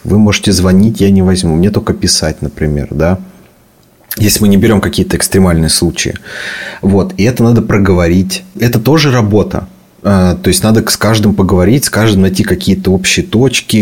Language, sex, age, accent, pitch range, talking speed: Russian, male, 30-49, native, 95-110 Hz, 165 wpm